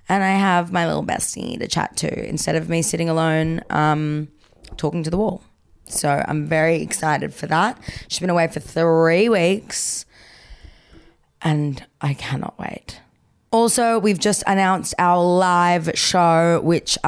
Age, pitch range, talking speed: 20-39, 150-185 Hz, 150 wpm